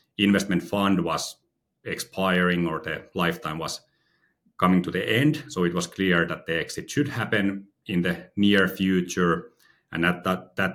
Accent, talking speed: Finnish, 160 wpm